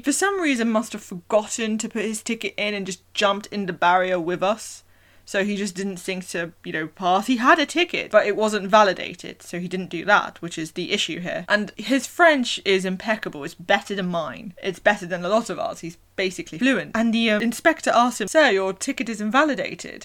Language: English